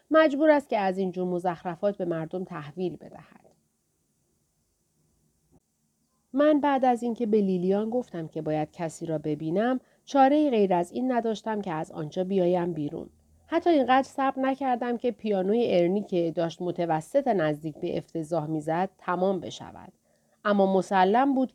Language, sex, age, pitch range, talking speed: Persian, female, 40-59, 160-230 Hz, 140 wpm